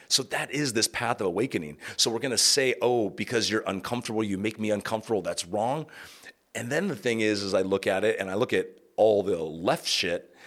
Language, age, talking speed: English, 30-49, 225 wpm